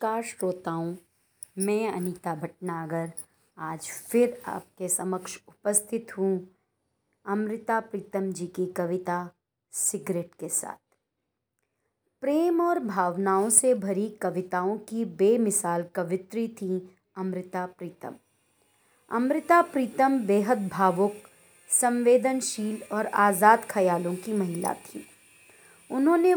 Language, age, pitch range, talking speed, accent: Hindi, 30-49, 185-240 Hz, 100 wpm, native